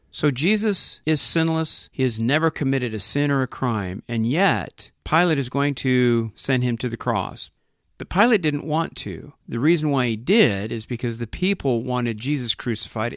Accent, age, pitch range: American, 40-59, 115-150 Hz